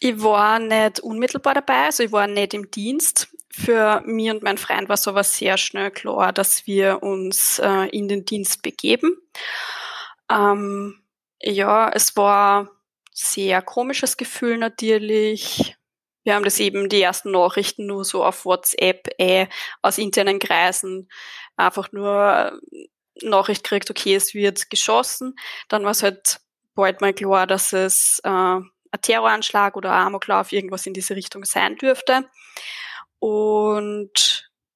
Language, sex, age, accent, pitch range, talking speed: German, female, 20-39, German, 195-225 Hz, 140 wpm